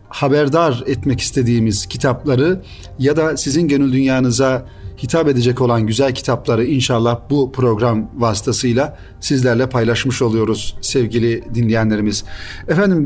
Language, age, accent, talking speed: Turkish, 40-59, native, 110 wpm